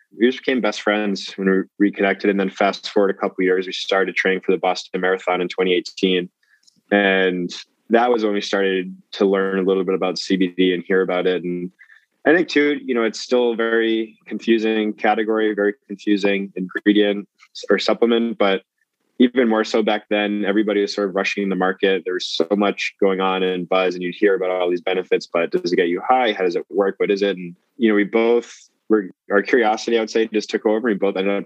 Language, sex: English, male